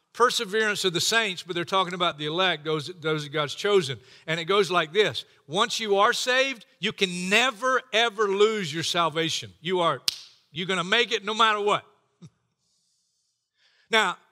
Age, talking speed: 50-69, 175 wpm